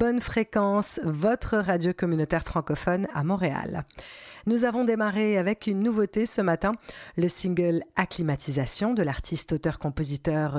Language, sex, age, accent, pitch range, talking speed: French, female, 40-59, French, 155-195 Hz, 135 wpm